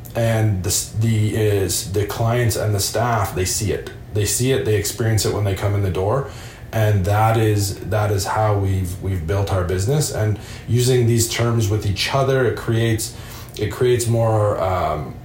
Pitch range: 100-120 Hz